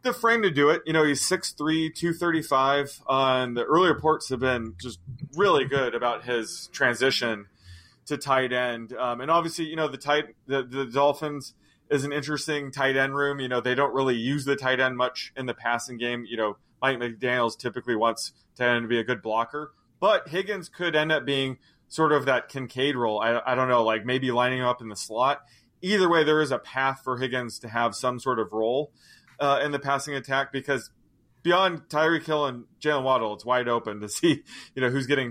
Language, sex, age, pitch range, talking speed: English, male, 20-39, 120-145 Hz, 220 wpm